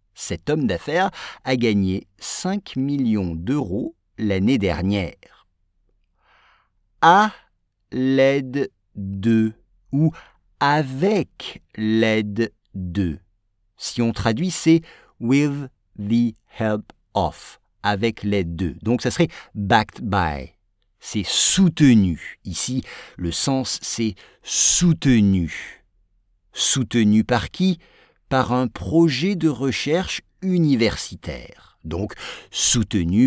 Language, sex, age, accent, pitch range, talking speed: English, male, 50-69, French, 100-155 Hz, 90 wpm